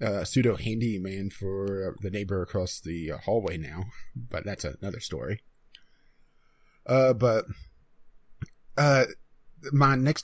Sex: male